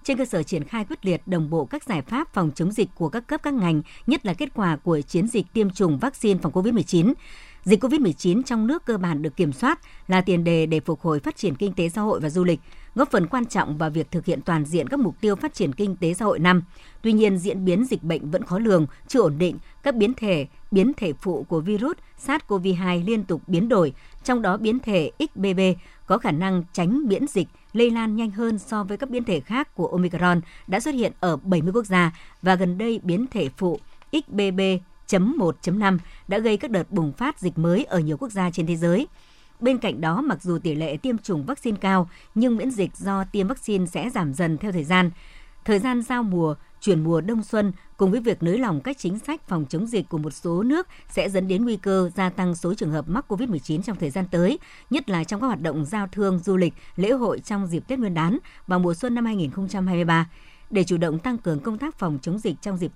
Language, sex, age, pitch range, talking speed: Vietnamese, male, 60-79, 170-220 Hz, 235 wpm